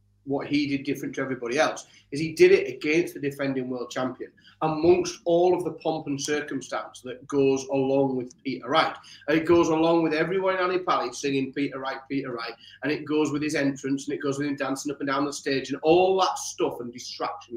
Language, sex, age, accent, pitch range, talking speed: English, male, 30-49, British, 130-170 Hz, 225 wpm